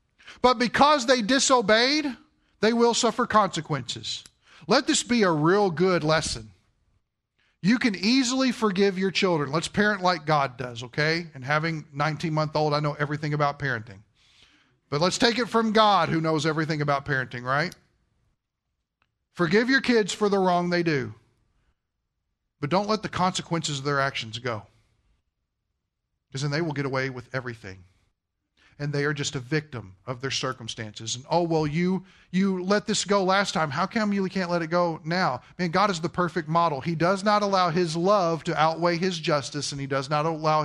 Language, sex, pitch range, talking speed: English, male, 135-195 Hz, 175 wpm